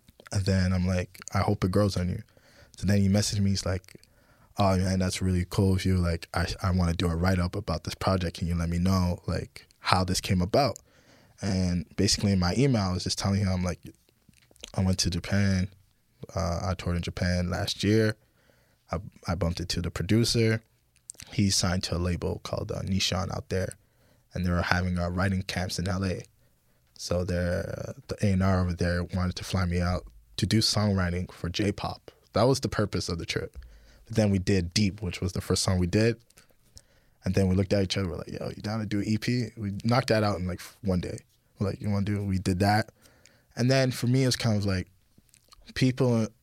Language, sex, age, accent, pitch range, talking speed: English, male, 20-39, American, 90-110 Hz, 215 wpm